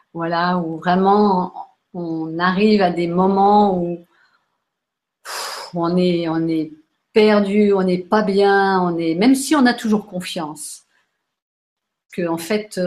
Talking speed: 135 wpm